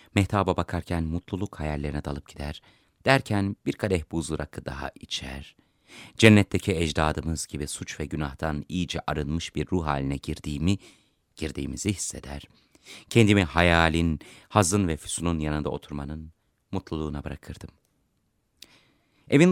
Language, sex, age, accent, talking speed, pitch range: Turkish, male, 30-49, native, 115 wpm, 75-105 Hz